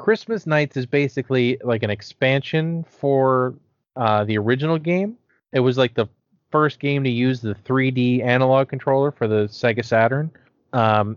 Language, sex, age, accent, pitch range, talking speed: English, male, 30-49, American, 110-145 Hz, 155 wpm